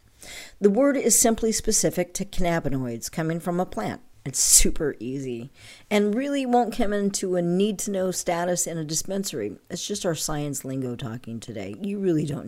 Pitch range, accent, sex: 130-200 Hz, American, female